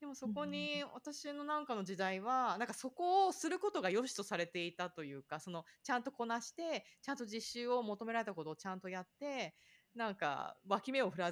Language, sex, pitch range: Japanese, female, 170-255 Hz